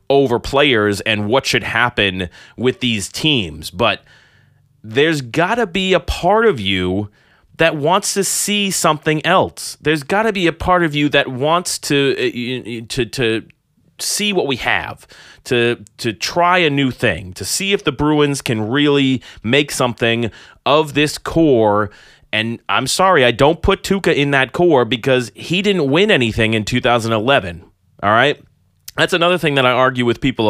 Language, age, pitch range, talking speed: English, 30-49, 115-155 Hz, 170 wpm